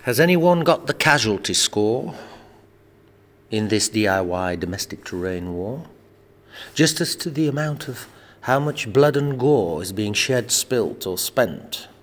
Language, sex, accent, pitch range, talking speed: English, male, British, 105-150 Hz, 145 wpm